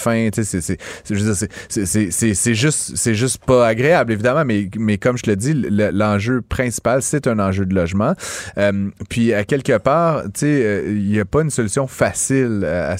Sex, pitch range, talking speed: male, 95-115 Hz, 215 wpm